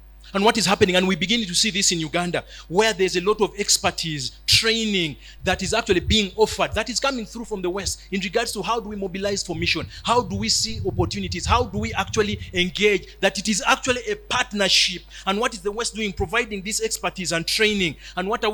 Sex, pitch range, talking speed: male, 130-220 Hz, 225 wpm